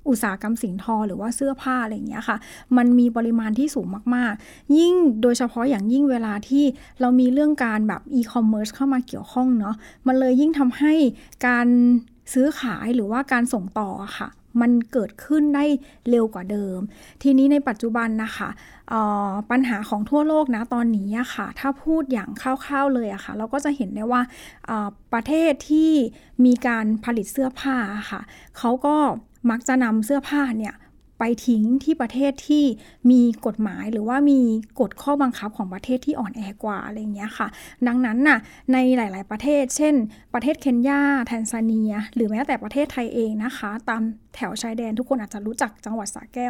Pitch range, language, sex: 220-275 Hz, Thai, female